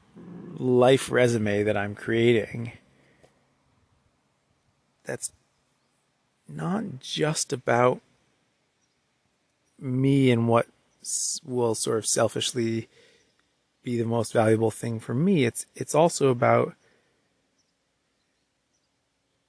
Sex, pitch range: male, 110-130 Hz